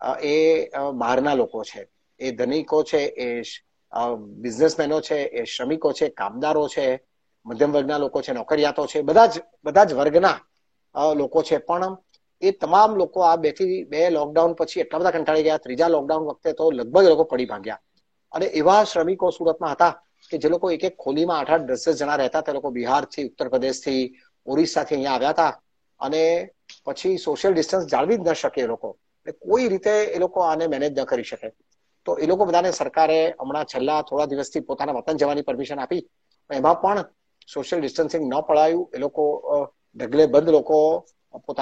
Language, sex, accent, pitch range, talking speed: Gujarati, male, native, 140-170 Hz, 95 wpm